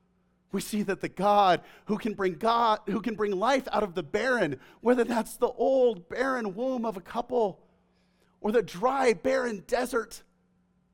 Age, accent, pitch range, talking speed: 40-59, American, 175-245 Hz, 170 wpm